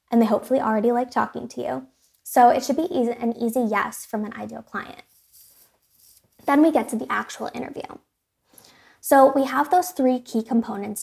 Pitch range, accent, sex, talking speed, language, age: 210-250 Hz, American, female, 180 wpm, English, 20-39